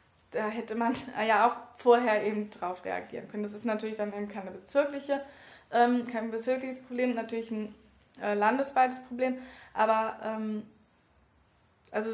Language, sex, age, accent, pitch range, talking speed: German, female, 20-39, German, 215-245 Hz, 145 wpm